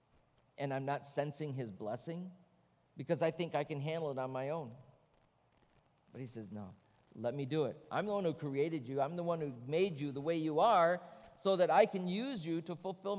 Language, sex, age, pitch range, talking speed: English, male, 50-69, 145-210 Hz, 220 wpm